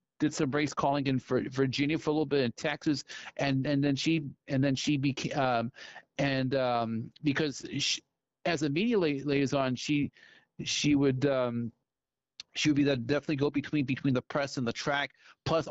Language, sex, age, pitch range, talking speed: English, male, 40-59, 125-145 Hz, 175 wpm